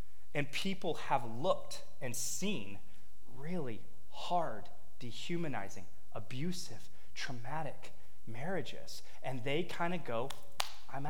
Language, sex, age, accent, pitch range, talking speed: English, male, 30-49, American, 100-155 Hz, 95 wpm